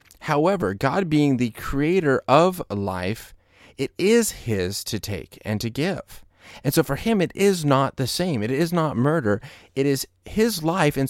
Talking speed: 180 wpm